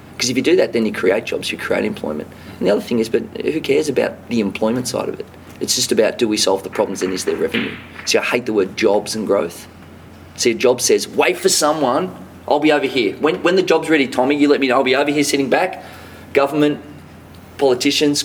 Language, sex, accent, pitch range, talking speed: English, male, Australian, 110-150 Hz, 245 wpm